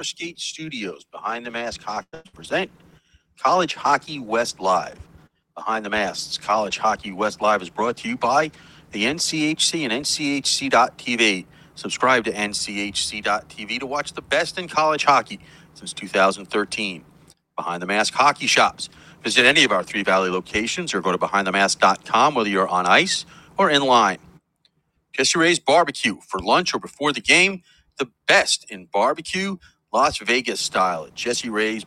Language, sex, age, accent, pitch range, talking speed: English, male, 40-59, American, 105-150 Hz, 150 wpm